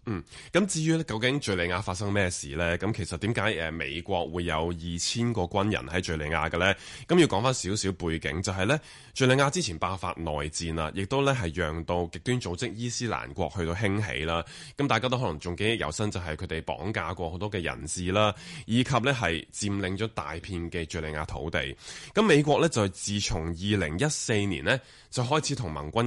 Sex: male